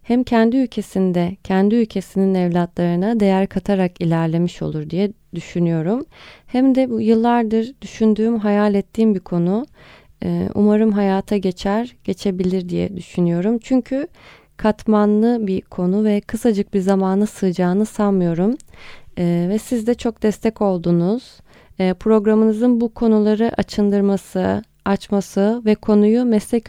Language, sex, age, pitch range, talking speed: Turkish, female, 30-49, 185-225 Hz, 115 wpm